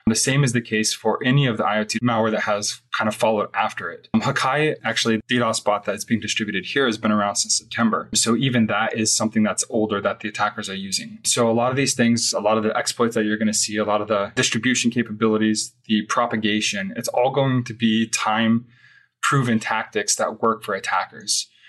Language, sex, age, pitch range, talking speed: English, male, 20-39, 110-120 Hz, 220 wpm